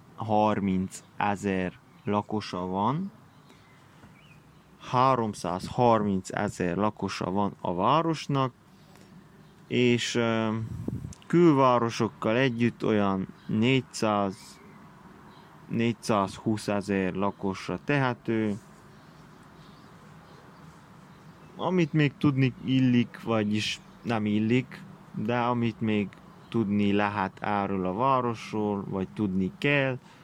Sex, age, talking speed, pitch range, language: male, 30-49, 70 wpm, 100-145 Hz, Hungarian